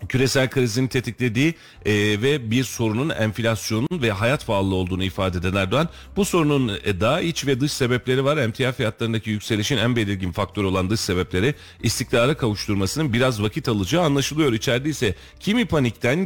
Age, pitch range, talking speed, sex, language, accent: 40-59, 95-130 Hz, 160 wpm, male, Turkish, native